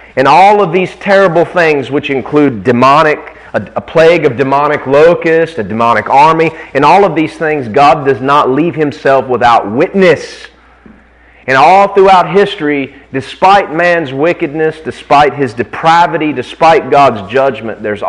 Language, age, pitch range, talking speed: English, 30-49, 135-180 Hz, 145 wpm